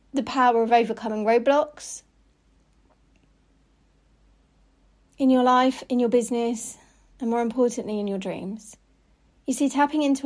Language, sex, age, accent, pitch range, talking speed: English, female, 40-59, British, 195-245 Hz, 125 wpm